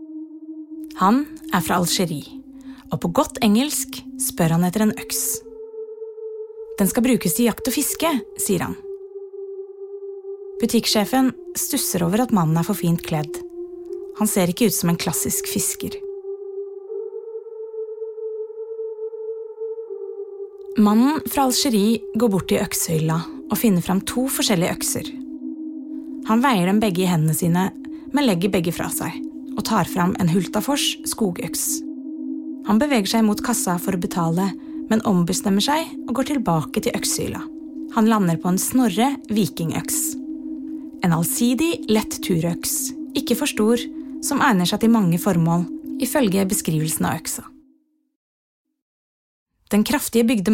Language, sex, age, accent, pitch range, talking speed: English, female, 30-49, Swedish, 200-310 Hz, 135 wpm